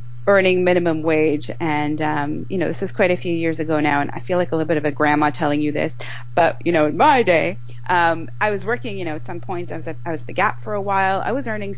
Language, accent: English, American